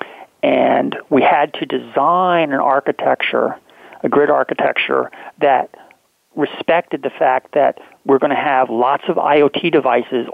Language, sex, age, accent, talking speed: English, male, 40-59, American, 135 wpm